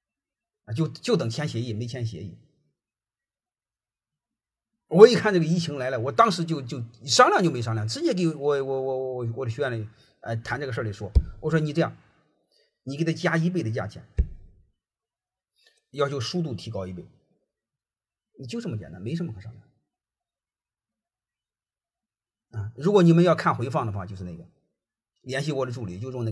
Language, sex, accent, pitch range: Chinese, male, native, 110-185 Hz